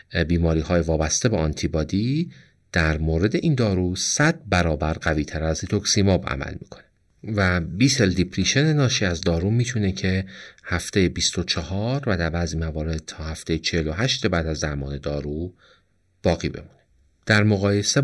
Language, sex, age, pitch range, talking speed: Persian, male, 40-59, 80-100 Hz, 135 wpm